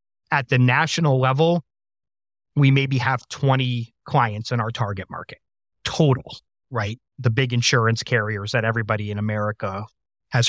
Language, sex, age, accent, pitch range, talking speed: English, male, 30-49, American, 110-135 Hz, 135 wpm